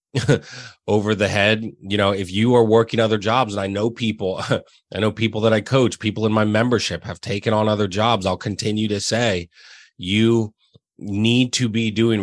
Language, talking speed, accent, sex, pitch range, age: English, 190 wpm, American, male, 95-110 Hz, 30-49